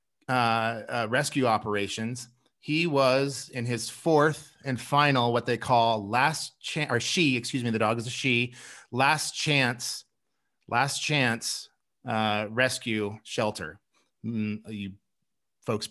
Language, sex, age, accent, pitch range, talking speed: English, male, 30-49, American, 115-145 Hz, 130 wpm